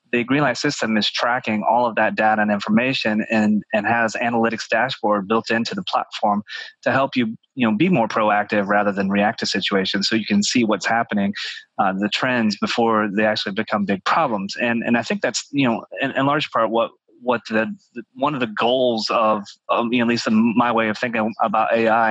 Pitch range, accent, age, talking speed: 105-120 Hz, American, 30-49, 215 wpm